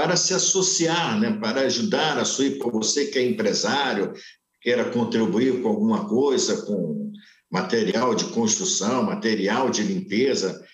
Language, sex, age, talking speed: Portuguese, male, 60-79, 140 wpm